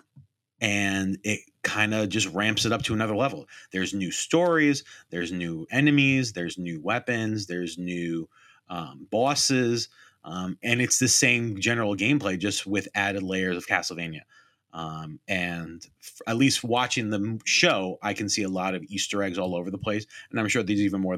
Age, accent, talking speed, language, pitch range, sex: 30-49, American, 175 wpm, English, 90-115 Hz, male